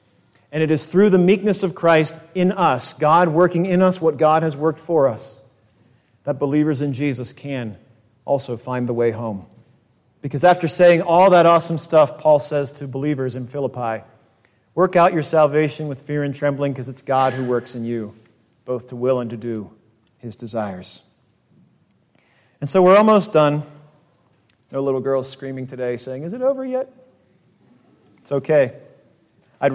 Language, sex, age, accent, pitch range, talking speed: English, male, 40-59, American, 125-180 Hz, 170 wpm